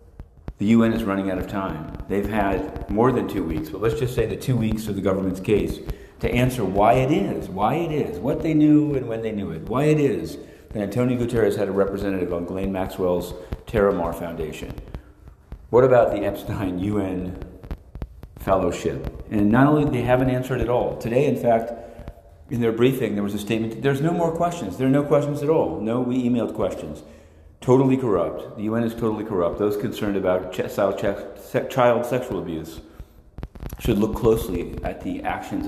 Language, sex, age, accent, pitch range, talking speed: English, male, 50-69, American, 85-115 Hz, 190 wpm